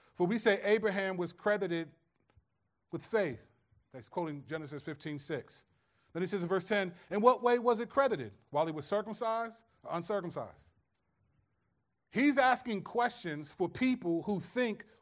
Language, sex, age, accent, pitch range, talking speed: English, male, 30-49, American, 145-210 Hz, 150 wpm